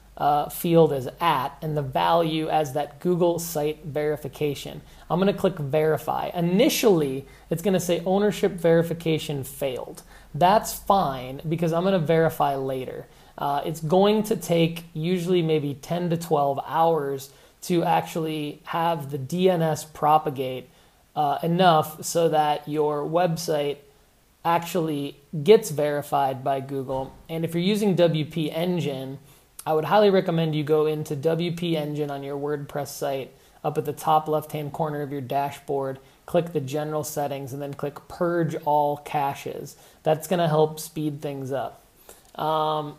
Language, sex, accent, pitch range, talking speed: English, male, American, 145-170 Hz, 150 wpm